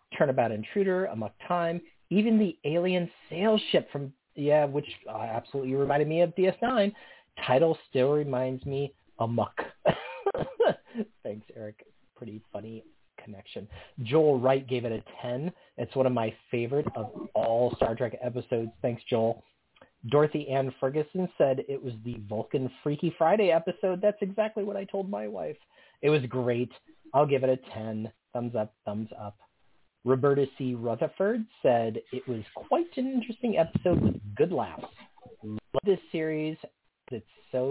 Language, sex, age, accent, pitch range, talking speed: English, male, 30-49, American, 120-175 Hz, 150 wpm